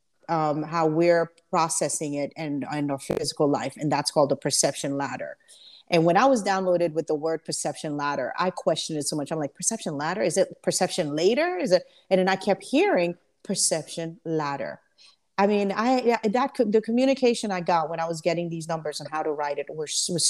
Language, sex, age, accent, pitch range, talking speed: English, female, 40-59, American, 155-190 Hz, 210 wpm